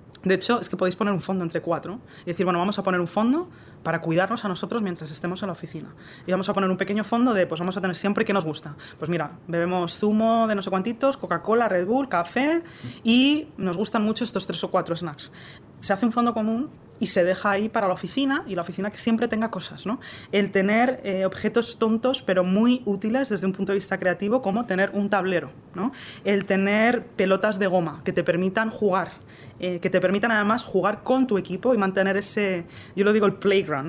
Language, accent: Spanish, Spanish